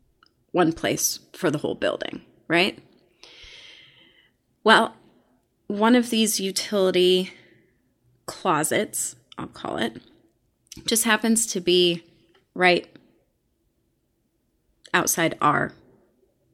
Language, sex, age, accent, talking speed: English, female, 30-49, American, 85 wpm